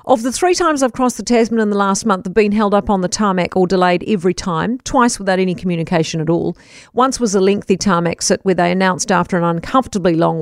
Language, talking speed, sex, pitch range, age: English, 240 wpm, female, 180-230 Hz, 50-69